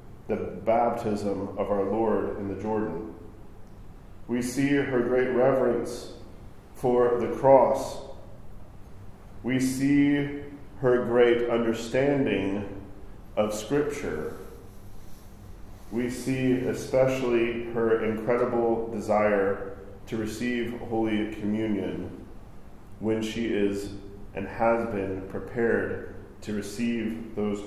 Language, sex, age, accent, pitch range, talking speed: English, male, 40-59, American, 100-115 Hz, 95 wpm